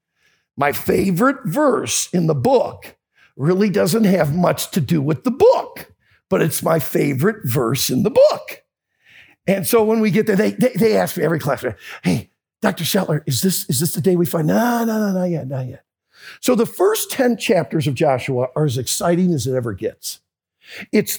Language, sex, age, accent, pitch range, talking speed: English, male, 50-69, American, 150-230 Hz, 195 wpm